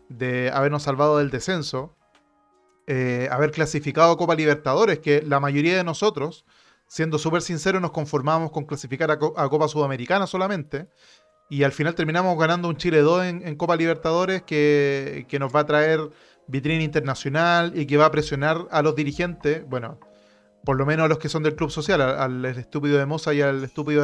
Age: 30-49